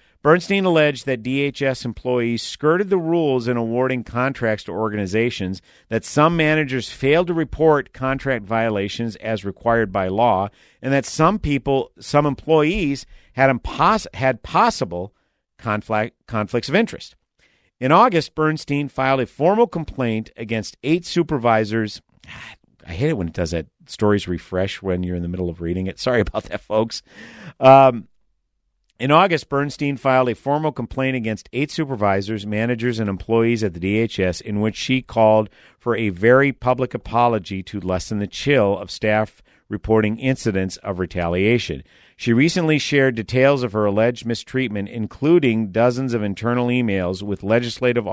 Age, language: 50-69, English